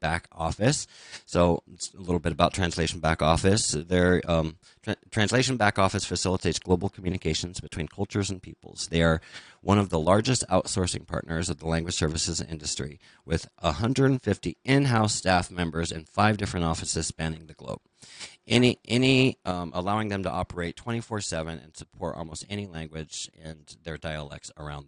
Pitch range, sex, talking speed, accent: 85-105 Hz, male, 165 wpm, American